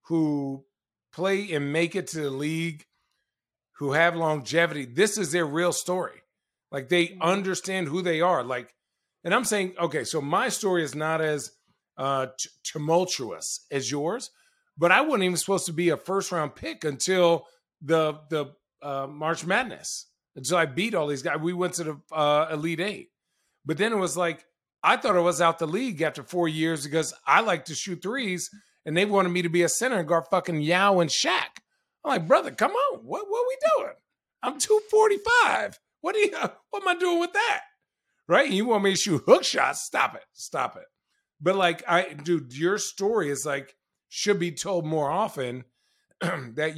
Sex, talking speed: male, 195 wpm